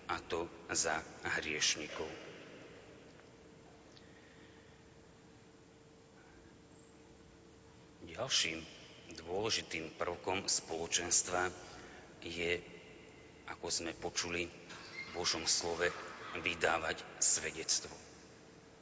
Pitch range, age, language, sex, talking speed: 85-95 Hz, 40-59, Slovak, male, 55 wpm